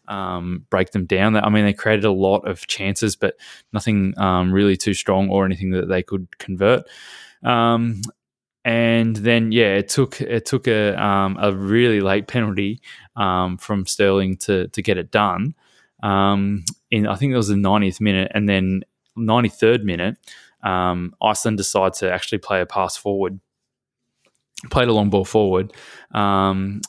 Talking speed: 165 wpm